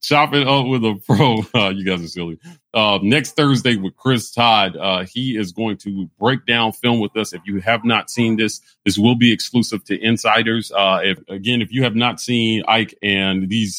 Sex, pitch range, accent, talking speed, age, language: male, 100-115 Hz, American, 220 wpm, 40-59, English